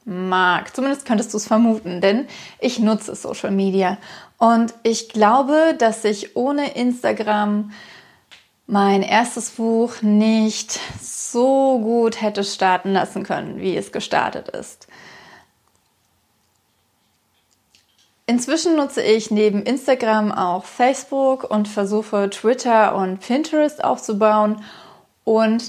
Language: German